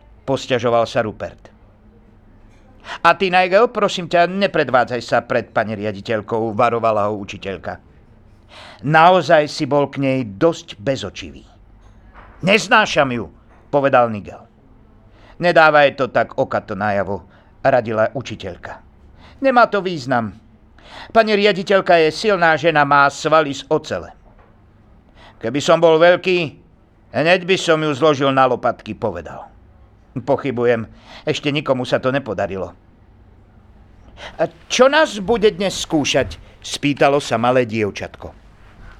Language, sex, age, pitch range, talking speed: Slovak, male, 50-69, 105-175 Hz, 115 wpm